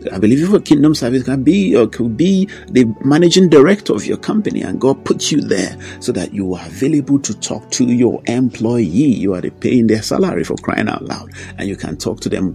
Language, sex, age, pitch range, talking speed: English, male, 50-69, 105-130 Hz, 230 wpm